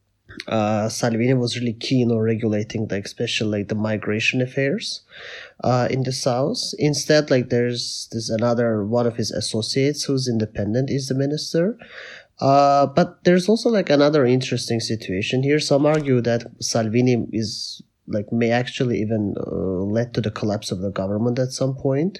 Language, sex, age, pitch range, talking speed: English, male, 30-49, 110-140 Hz, 160 wpm